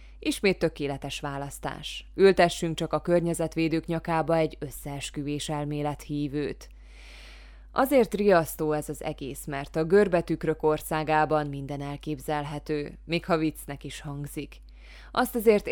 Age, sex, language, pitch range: 20-39, female, Hungarian, 145-185 Hz